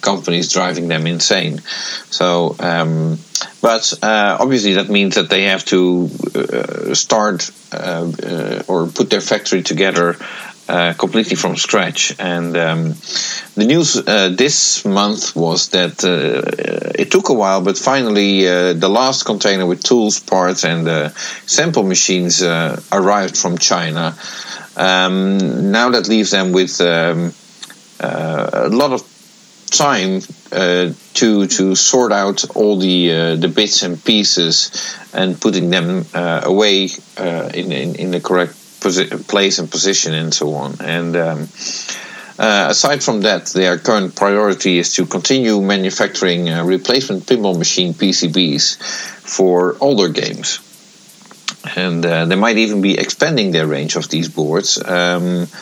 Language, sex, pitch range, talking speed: English, male, 85-100 Hz, 145 wpm